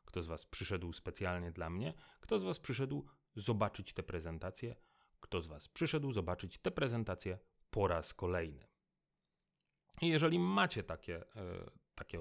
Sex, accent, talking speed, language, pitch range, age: male, native, 145 wpm, Polish, 85-110 Hz, 30-49